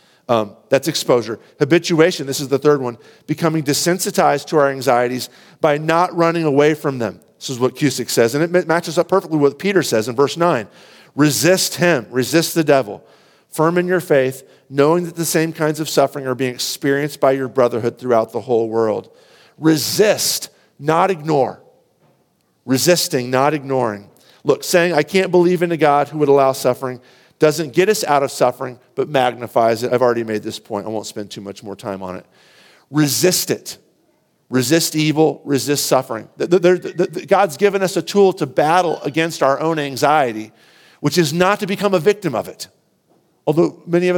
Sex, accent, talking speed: male, American, 180 wpm